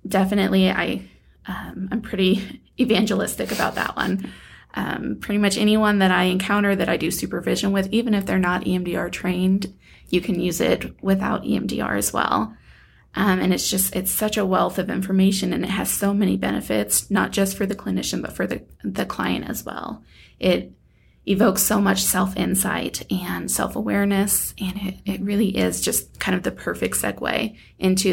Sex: female